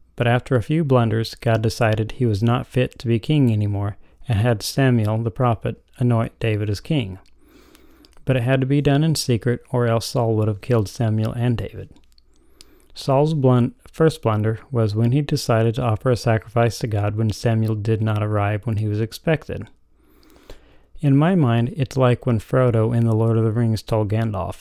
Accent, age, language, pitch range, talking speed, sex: American, 30-49, English, 110-130 Hz, 190 wpm, male